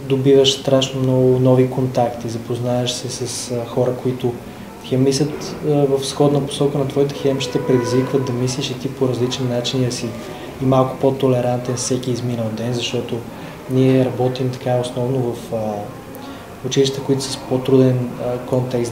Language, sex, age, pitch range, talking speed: Bulgarian, male, 20-39, 120-135 Hz, 145 wpm